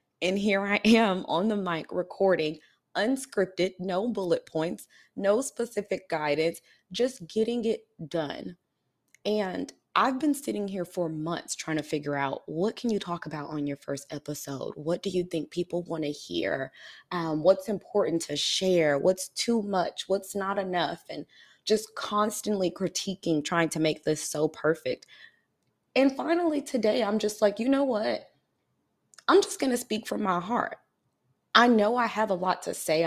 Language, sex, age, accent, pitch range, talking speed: English, female, 20-39, American, 165-215 Hz, 165 wpm